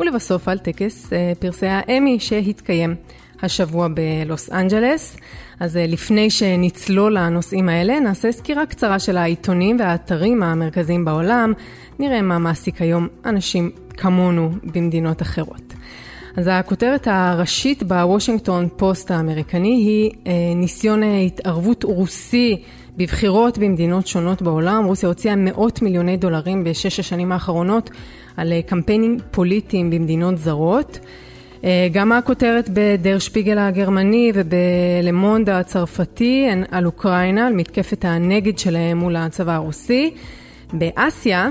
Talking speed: 105 wpm